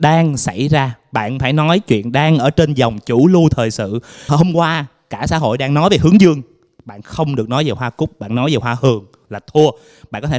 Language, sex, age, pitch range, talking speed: Vietnamese, male, 20-39, 120-165 Hz, 245 wpm